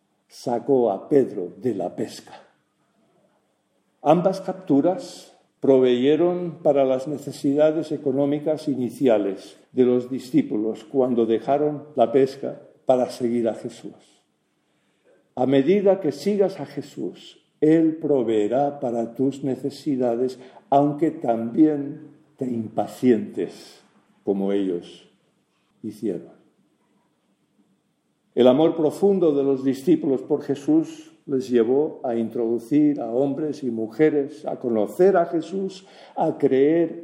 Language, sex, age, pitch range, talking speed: English, male, 50-69, 120-150 Hz, 105 wpm